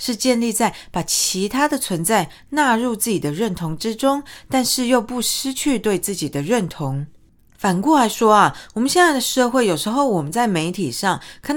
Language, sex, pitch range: Chinese, female, 175-245 Hz